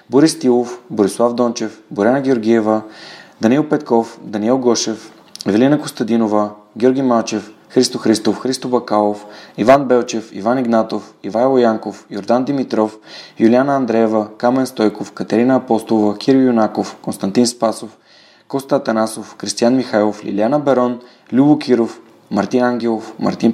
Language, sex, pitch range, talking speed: Bulgarian, male, 105-125 Hz, 120 wpm